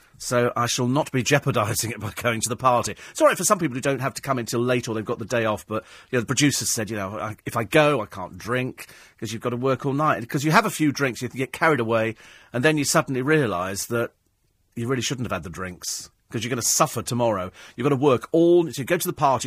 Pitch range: 115-150 Hz